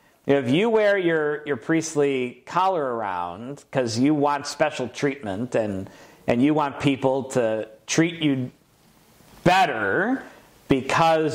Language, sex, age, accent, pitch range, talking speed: English, male, 50-69, American, 115-150 Hz, 120 wpm